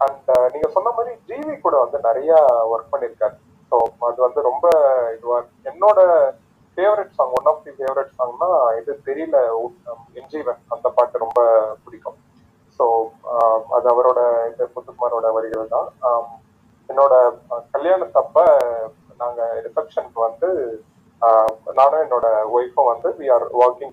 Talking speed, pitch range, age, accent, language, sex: 125 wpm, 120-170 Hz, 30-49, native, Tamil, male